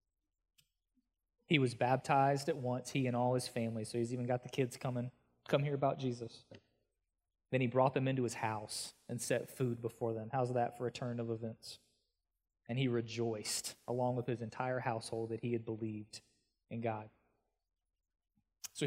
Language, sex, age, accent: English, male, 20-39, American